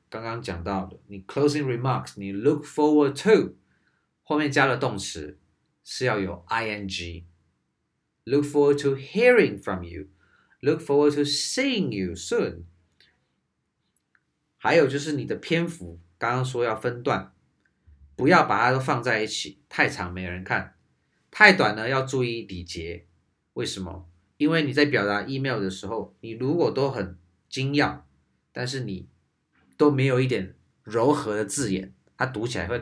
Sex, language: male, Chinese